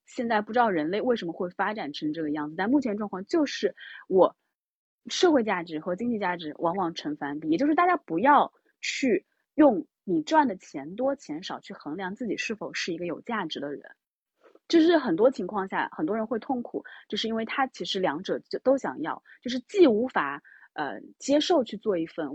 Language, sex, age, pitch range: Chinese, female, 20-39, 185-295 Hz